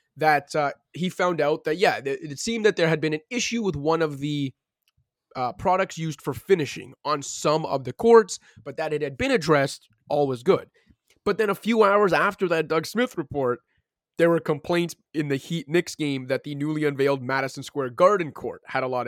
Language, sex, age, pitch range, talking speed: English, male, 20-39, 135-170 Hz, 210 wpm